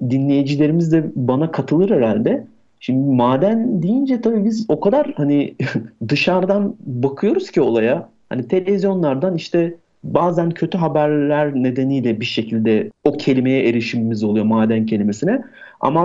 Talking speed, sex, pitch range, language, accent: 125 wpm, male, 120-160 Hz, Turkish, native